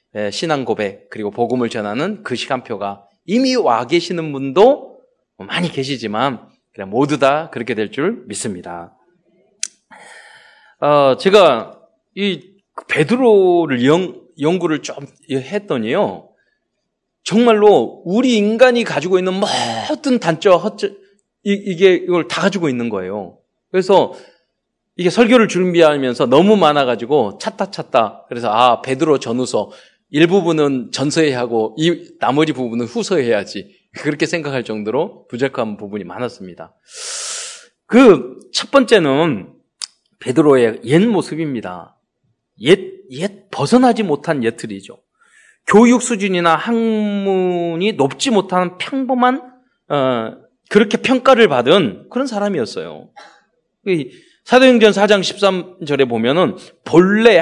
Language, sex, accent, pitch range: Korean, male, native, 140-225 Hz